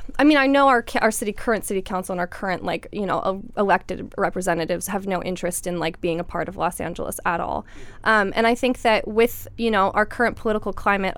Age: 20-39